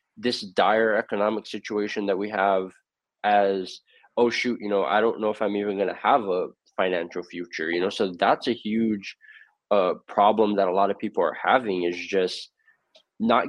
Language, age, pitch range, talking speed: English, 20-39, 100-120 Hz, 185 wpm